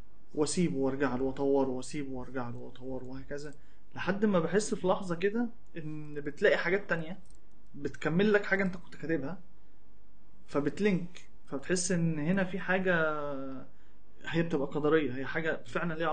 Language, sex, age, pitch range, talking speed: Arabic, male, 20-39, 150-190 Hz, 140 wpm